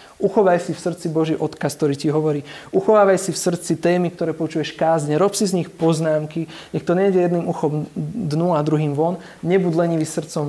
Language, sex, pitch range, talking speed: Slovak, male, 150-180 Hz, 195 wpm